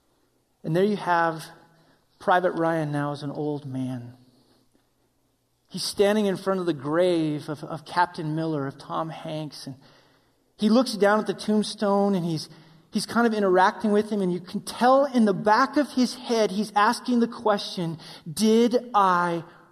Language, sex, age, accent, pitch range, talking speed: English, male, 30-49, American, 140-200 Hz, 170 wpm